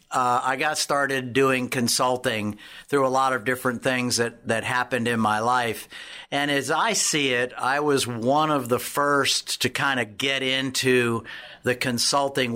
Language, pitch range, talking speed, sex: English, 120-145 Hz, 170 wpm, male